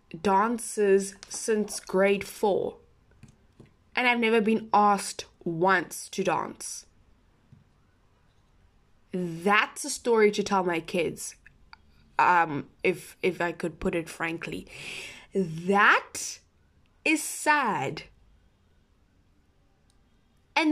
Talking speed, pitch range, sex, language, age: 90 wpm, 170-275 Hz, female, English, 10-29